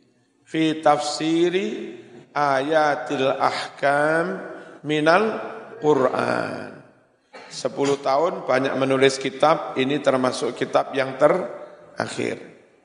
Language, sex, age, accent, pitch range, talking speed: Indonesian, male, 50-69, native, 130-160 Hz, 75 wpm